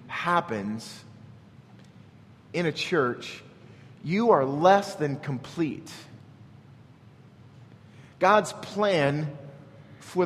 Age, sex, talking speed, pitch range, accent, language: 30-49, male, 70 wpm, 130-170 Hz, American, English